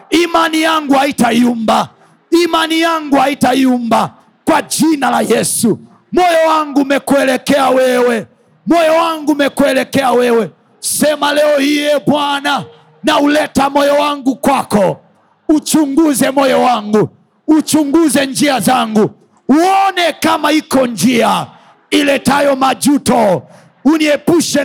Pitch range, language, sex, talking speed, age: 245-300 Hz, Swahili, male, 95 wpm, 50-69